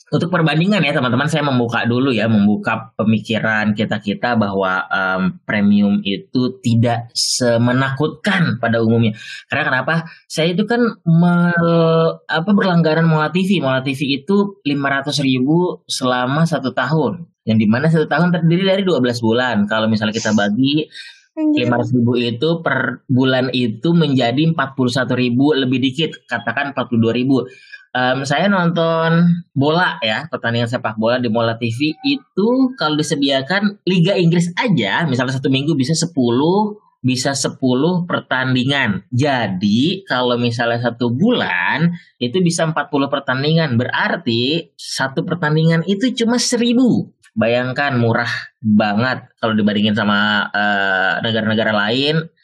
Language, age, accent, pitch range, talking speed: Indonesian, 20-39, native, 115-165 Hz, 130 wpm